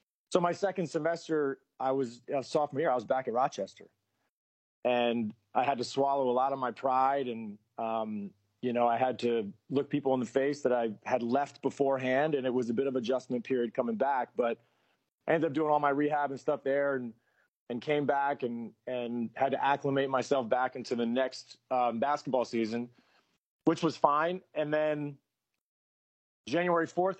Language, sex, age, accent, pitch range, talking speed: English, male, 30-49, American, 120-150 Hz, 190 wpm